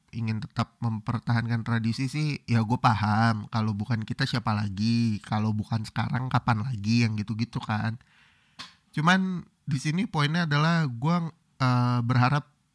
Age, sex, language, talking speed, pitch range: 30-49, male, Indonesian, 135 wpm, 110-130 Hz